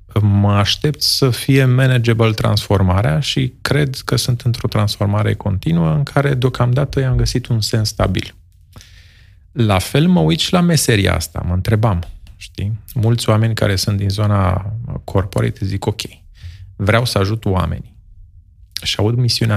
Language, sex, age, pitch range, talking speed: Romanian, male, 30-49, 95-125 Hz, 145 wpm